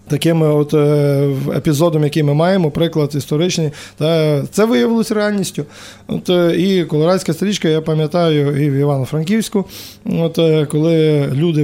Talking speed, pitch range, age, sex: 120 wpm, 145-165 Hz, 20-39, male